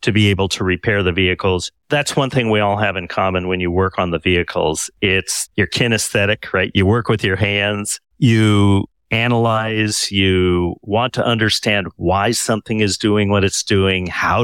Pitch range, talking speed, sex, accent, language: 100-130 Hz, 185 wpm, male, American, English